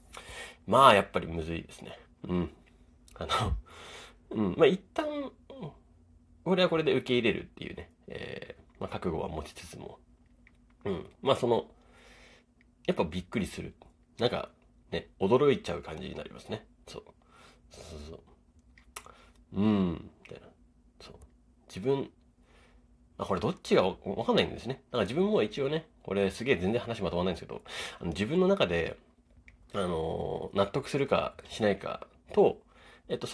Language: Japanese